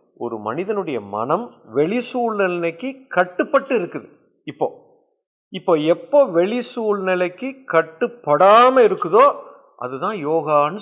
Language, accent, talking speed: English, Indian, 80 wpm